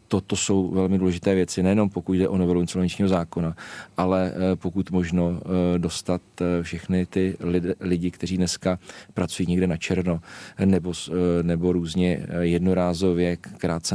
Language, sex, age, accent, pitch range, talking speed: Czech, male, 40-59, native, 90-100 Hz, 125 wpm